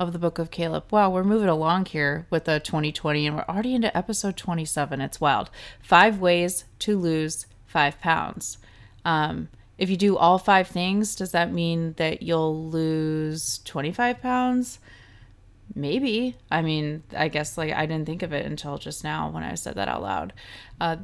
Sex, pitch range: female, 145-190 Hz